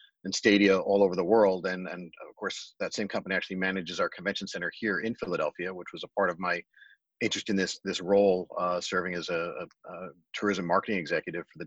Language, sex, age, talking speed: English, male, 40-59, 220 wpm